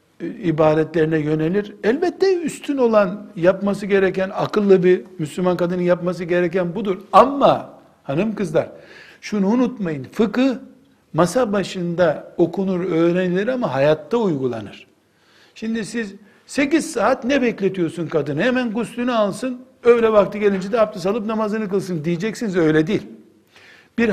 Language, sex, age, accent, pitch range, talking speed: Turkish, male, 60-79, native, 165-210 Hz, 120 wpm